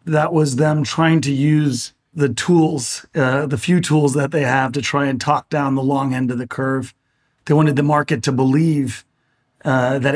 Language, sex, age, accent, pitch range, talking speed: English, male, 40-59, American, 125-145 Hz, 200 wpm